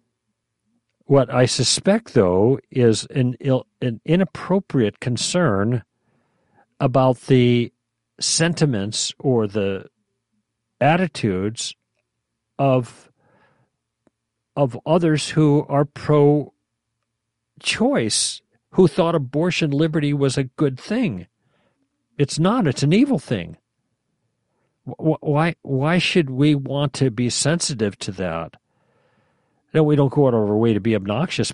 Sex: male